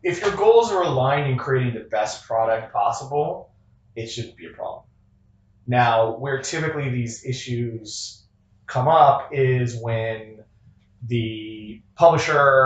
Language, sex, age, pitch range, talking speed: Romanian, male, 20-39, 110-130 Hz, 130 wpm